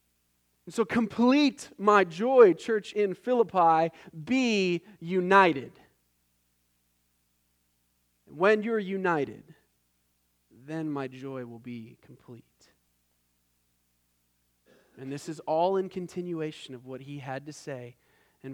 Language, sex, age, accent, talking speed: English, male, 30-49, American, 100 wpm